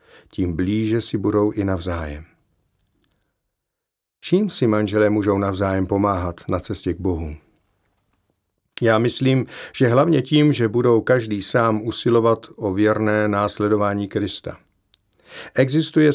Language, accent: Czech, native